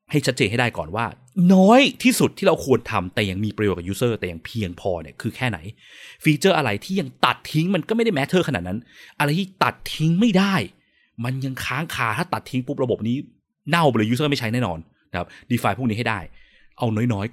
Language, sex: Thai, male